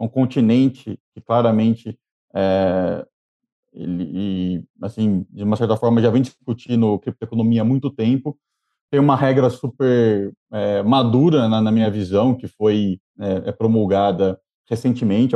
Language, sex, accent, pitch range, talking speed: English, male, Brazilian, 105-130 Hz, 115 wpm